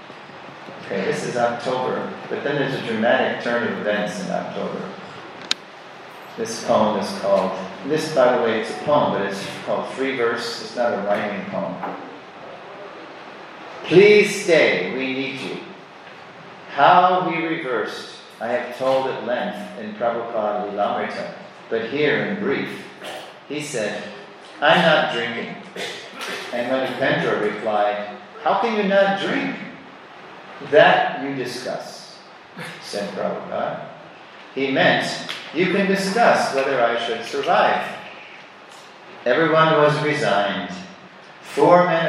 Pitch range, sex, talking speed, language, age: 115-175 Hz, male, 125 wpm, English, 40-59